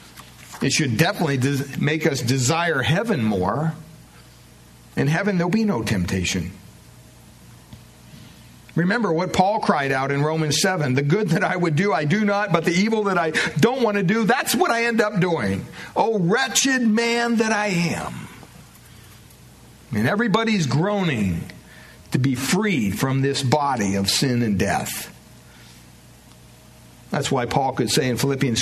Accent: American